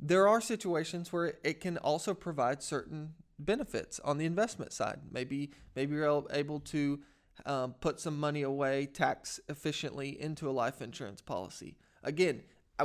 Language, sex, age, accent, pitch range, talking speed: English, male, 30-49, American, 135-160 Hz, 155 wpm